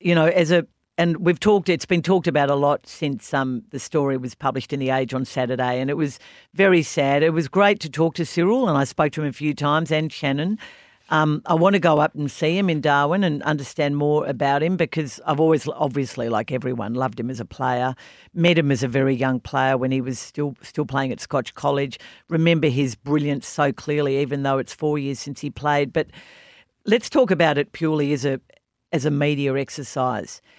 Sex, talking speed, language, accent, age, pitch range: female, 225 wpm, English, Australian, 50-69, 135-165 Hz